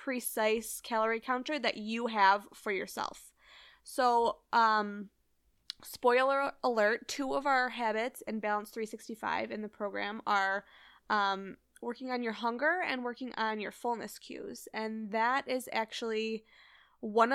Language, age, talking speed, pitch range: English, 20-39, 135 wpm, 210-240 Hz